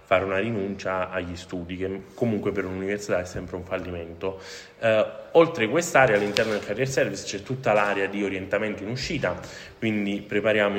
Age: 20-39